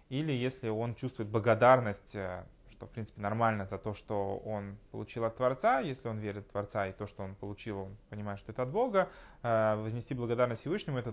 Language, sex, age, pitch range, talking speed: Russian, male, 20-39, 105-130 Hz, 195 wpm